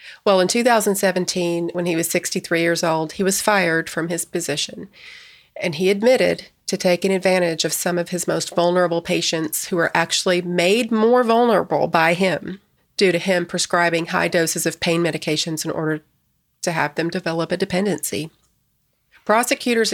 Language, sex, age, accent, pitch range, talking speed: English, female, 40-59, American, 170-195 Hz, 165 wpm